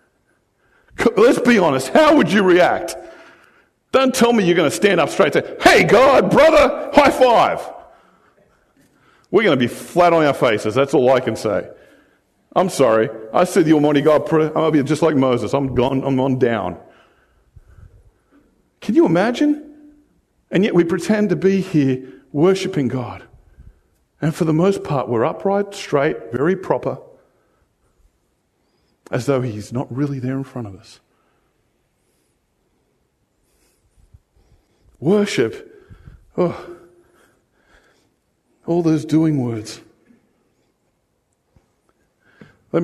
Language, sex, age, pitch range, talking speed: English, male, 50-69, 130-190 Hz, 130 wpm